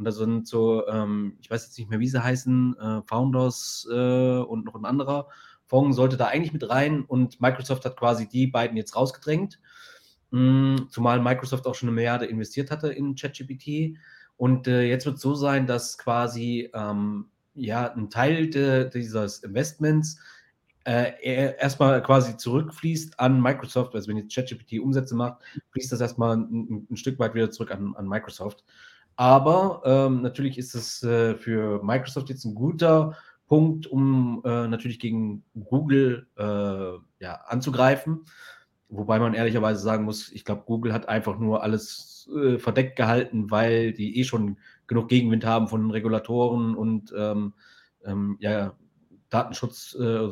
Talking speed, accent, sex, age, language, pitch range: 160 wpm, German, male, 30-49, German, 110-130 Hz